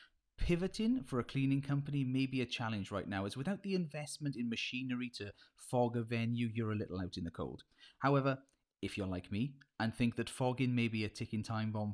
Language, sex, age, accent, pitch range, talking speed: English, male, 30-49, British, 115-145 Hz, 215 wpm